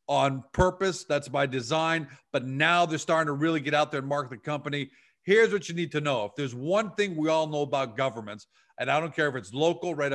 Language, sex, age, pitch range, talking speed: English, male, 40-59, 140-165 Hz, 240 wpm